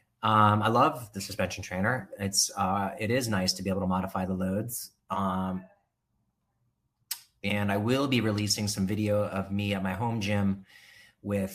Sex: male